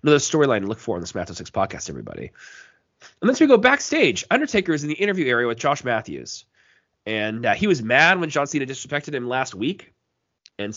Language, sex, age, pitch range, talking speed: English, male, 20-39, 105-150 Hz, 210 wpm